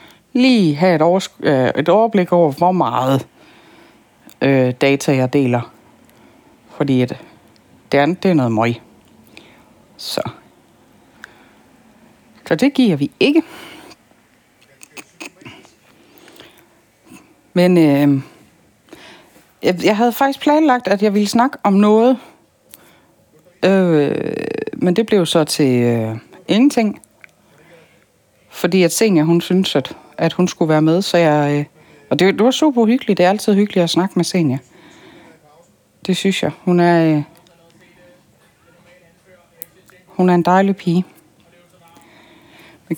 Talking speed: 105 wpm